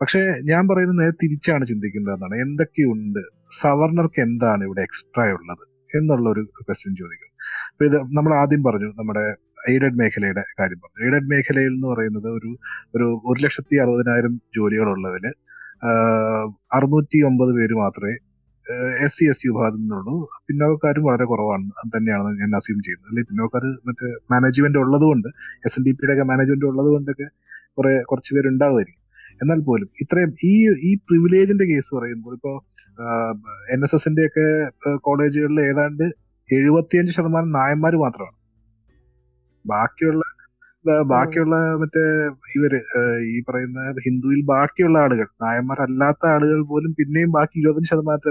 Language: Malayalam